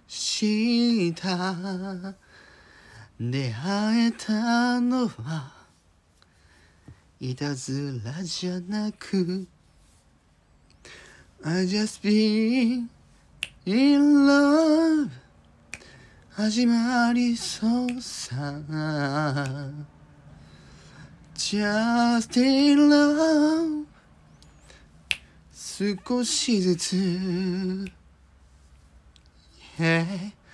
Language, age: Japanese, 30-49